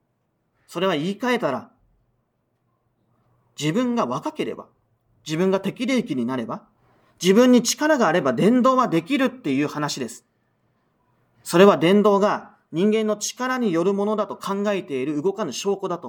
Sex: male